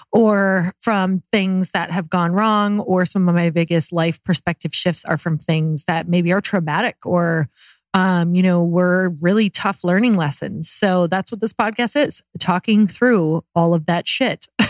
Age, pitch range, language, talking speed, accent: 30-49, 170-200 Hz, English, 175 wpm, American